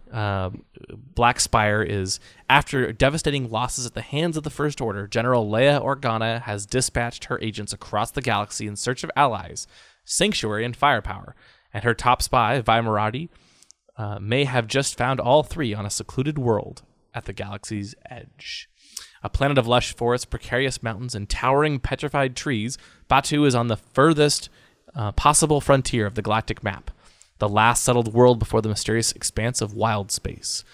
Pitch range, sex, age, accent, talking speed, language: 105-130 Hz, male, 20-39, American, 165 wpm, English